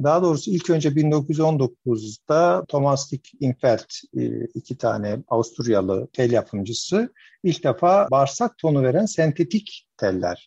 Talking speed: 115 wpm